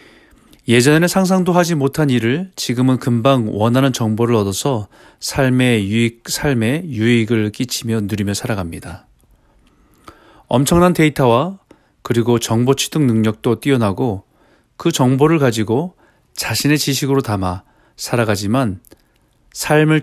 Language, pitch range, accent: Korean, 115-145 Hz, native